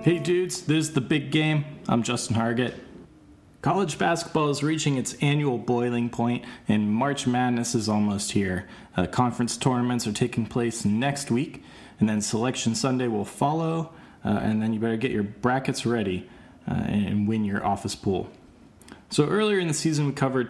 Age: 20-39